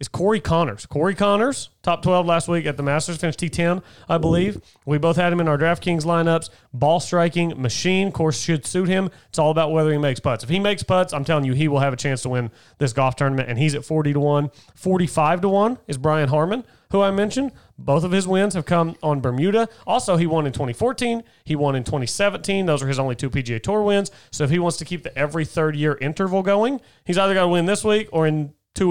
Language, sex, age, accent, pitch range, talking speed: English, male, 30-49, American, 135-175 Hz, 235 wpm